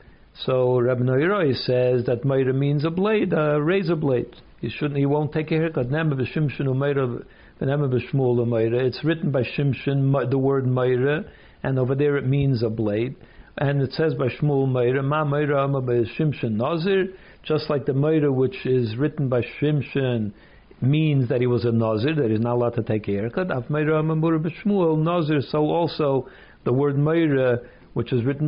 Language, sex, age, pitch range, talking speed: English, male, 60-79, 125-165 Hz, 155 wpm